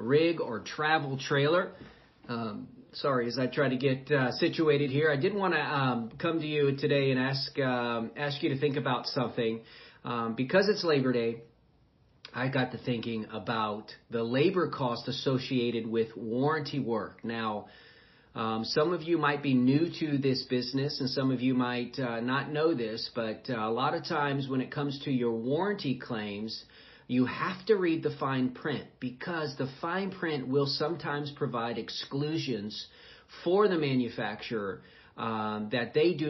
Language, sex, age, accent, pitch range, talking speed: English, male, 40-59, American, 115-150 Hz, 170 wpm